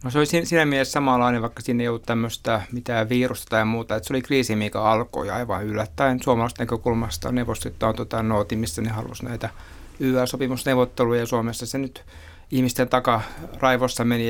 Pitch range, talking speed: 110-125 Hz, 170 wpm